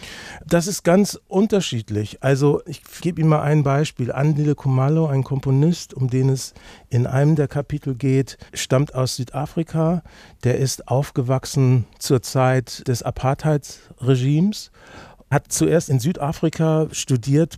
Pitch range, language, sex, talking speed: 125-145 Hz, German, male, 130 wpm